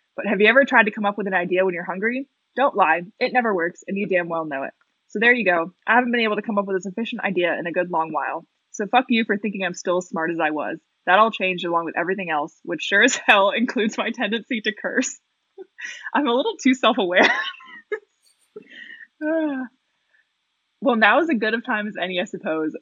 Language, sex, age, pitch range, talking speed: English, female, 20-39, 175-245 Hz, 235 wpm